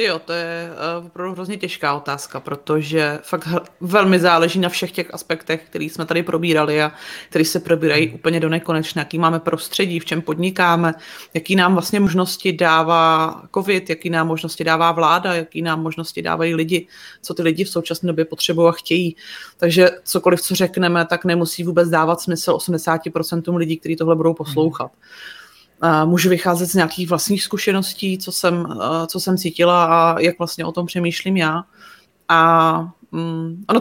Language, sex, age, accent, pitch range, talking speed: Czech, female, 30-49, native, 165-185 Hz, 165 wpm